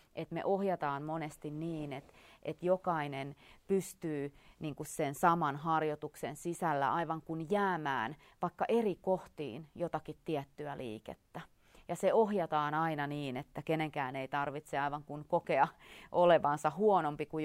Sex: female